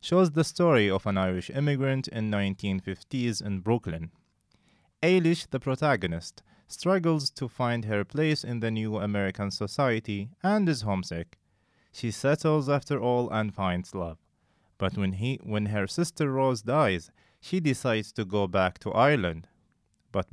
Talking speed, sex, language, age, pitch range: 145 wpm, male, English, 30-49, 105-145 Hz